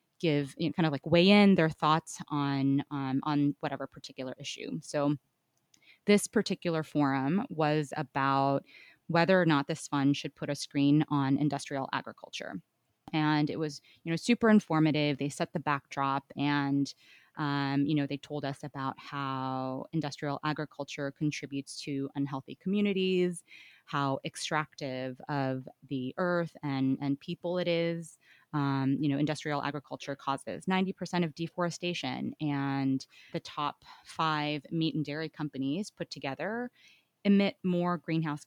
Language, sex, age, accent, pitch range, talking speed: English, female, 20-39, American, 140-165 Hz, 145 wpm